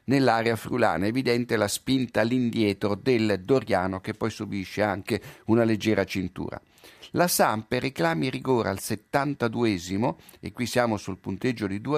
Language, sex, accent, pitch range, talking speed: Italian, male, native, 105-135 Hz, 145 wpm